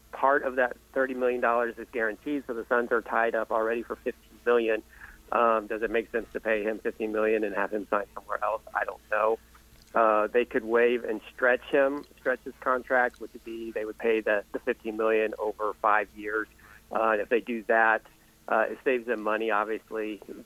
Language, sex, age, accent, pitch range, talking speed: English, male, 40-59, American, 110-125 Hz, 200 wpm